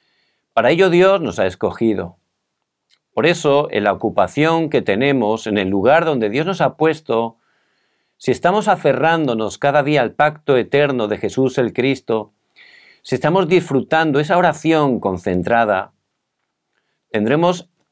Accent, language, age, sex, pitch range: Spanish, Korean, 50-69, male, 115-165 Hz